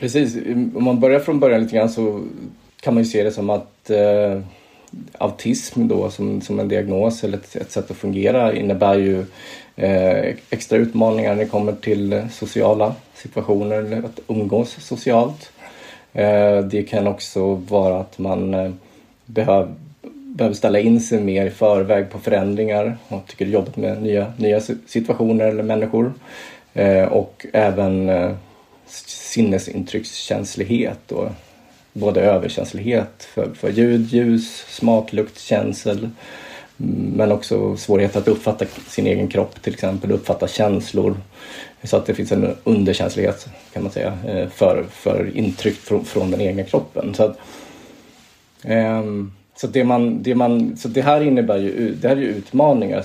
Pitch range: 100-120 Hz